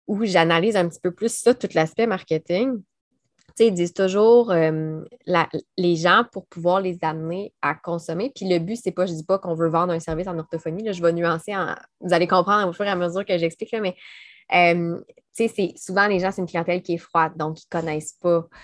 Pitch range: 165-200 Hz